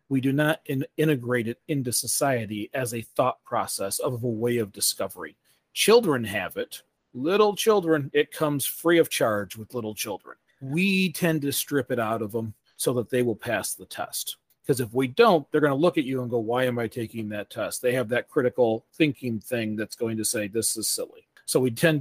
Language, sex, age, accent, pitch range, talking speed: English, male, 40-59, American, 115-145 Hz, 215 wpm